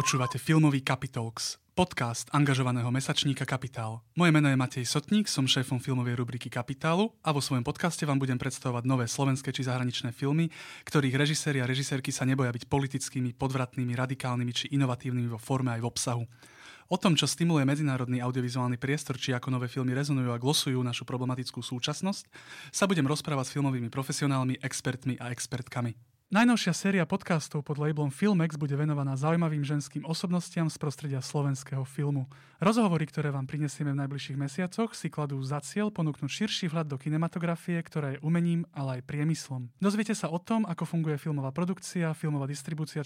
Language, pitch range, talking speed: Slovak, 130-160 Hz, 165 wpm